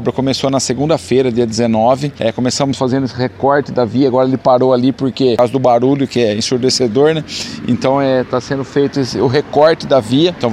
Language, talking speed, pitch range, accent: Portuguese, 205 wpm, 125-145 Hz, Brazilian